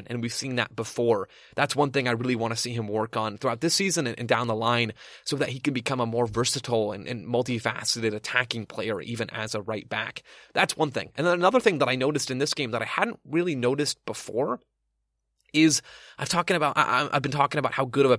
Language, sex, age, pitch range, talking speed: English, male, 20-39, 115-145 Hz, 240 wpm